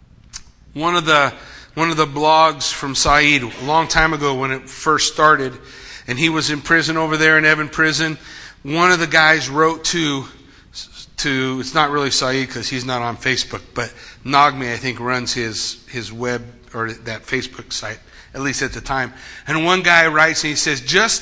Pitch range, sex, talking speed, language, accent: 115-160 Hz, male, 190 wpm, English, American